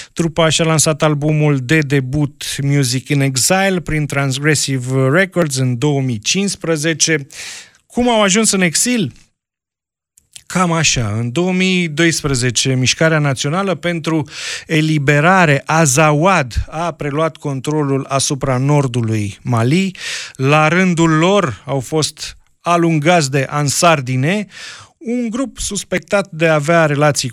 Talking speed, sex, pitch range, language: 110 wpm, male, 140-170 Hz, Romanian